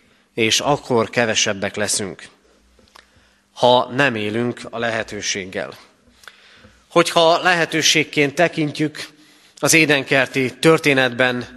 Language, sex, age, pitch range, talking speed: Hungarian, male, 30-49, 120-160 Hz, 80 wpm